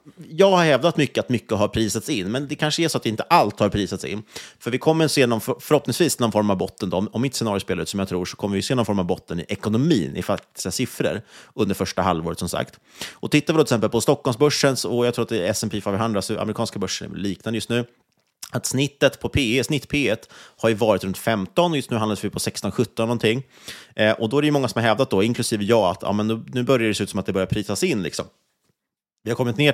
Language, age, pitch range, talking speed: Swedish, 30-49, 100-130 Hz, 260 wpm